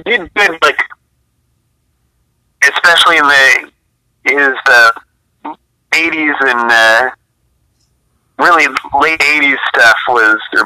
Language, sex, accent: English, male, American